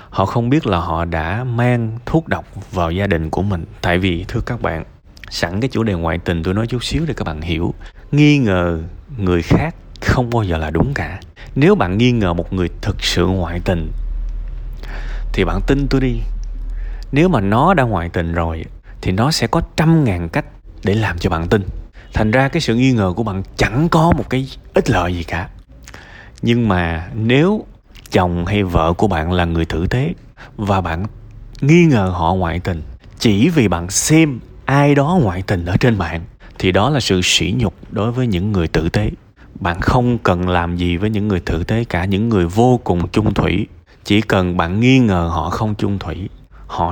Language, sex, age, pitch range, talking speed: Vietnamese, male, 20-39, 85-120 Hz, 205 wpm